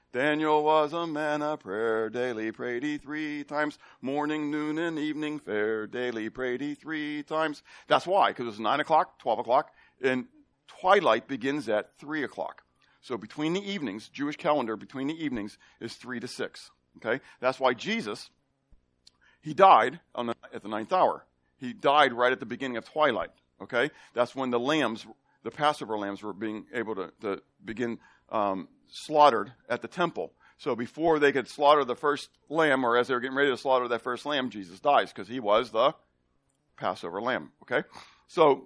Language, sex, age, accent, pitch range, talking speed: English, male, 50-69, American, 120-150 Hz, 180 wpm